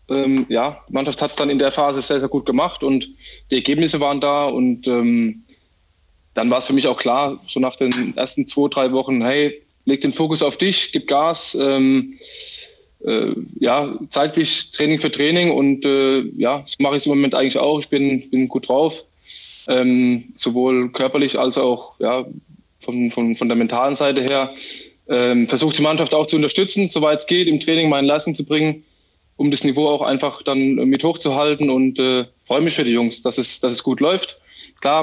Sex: male